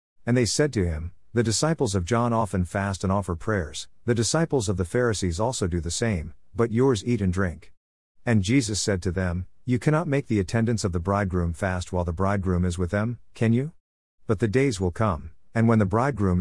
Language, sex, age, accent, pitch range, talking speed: English, male, 50-69, American, 90-115 Hz, 215 wpm